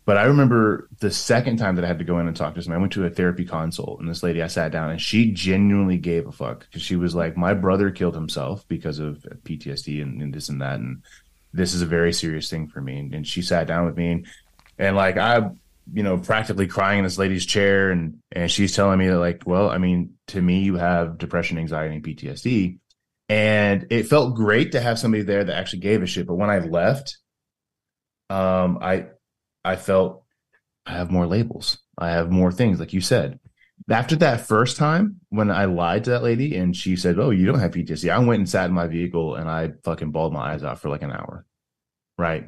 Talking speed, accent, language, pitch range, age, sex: 235 wpm, American, English, 85-105 Hz, 20-39, male